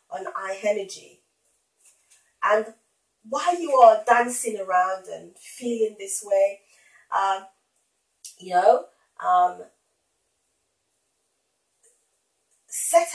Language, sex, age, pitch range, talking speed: English, female, 30-49, 205-320 Hz, 75 wpm